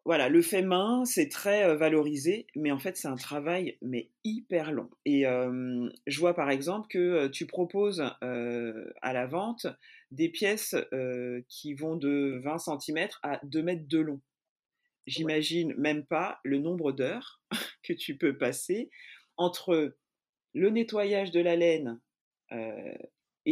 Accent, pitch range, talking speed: French, 130-175 Hz, 150 wpm